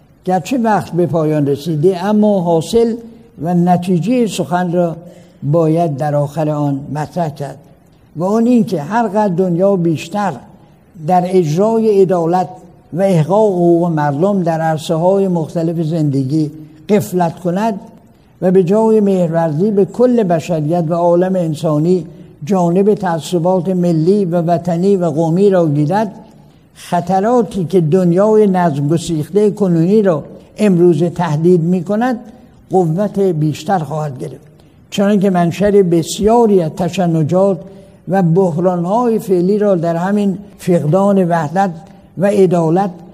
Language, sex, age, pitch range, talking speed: Persian, male, 60-79, 165-200 Hz, 120 wpm